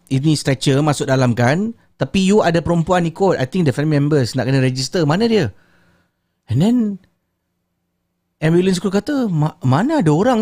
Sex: male